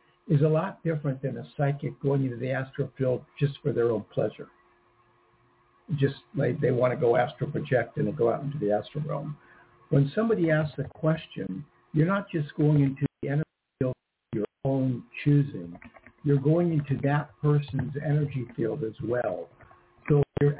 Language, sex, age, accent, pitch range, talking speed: English, male, 60-79, American, 130-155 Hz, 175 wpm